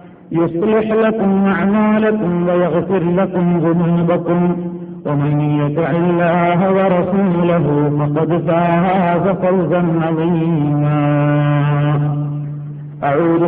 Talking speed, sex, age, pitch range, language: 65 wpm, male, 50-69, 145-180 Hz, Malayalam